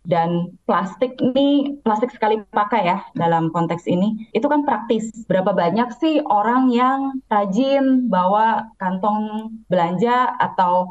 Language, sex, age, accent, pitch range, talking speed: Indonesian, female, 20-39, native, 185-255 Hz, 125 wpm